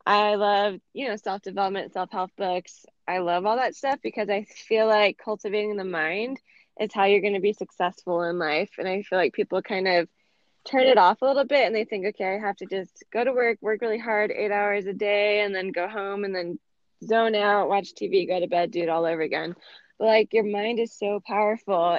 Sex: female